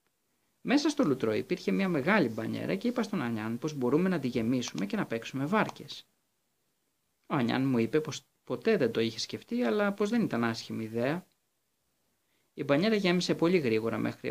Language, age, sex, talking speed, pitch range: Greek, 20-39, male, 175 wpm, 120-180 Hz